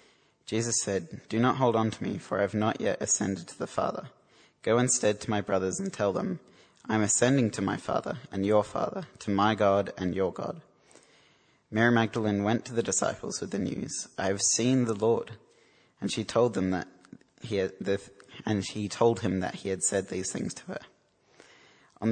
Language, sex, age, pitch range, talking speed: English, male, 20-39, 100-115 Hz, 185 wpm